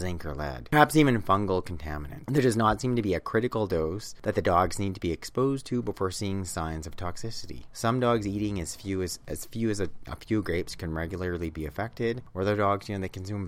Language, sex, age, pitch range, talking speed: English, male, 30-49, 75-105 Hz, 235 wpm